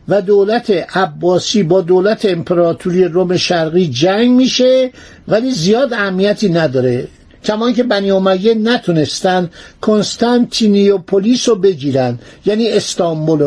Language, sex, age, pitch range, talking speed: Persian, male, 60-79, 175-235 Hz, 105 wpm